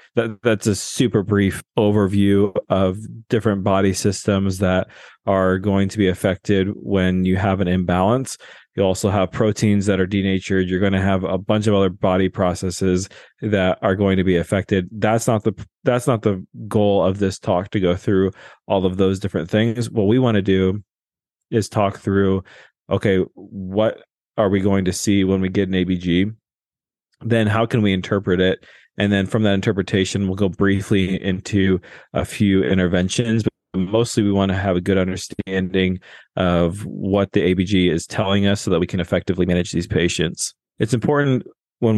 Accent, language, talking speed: American, English, 180 wpm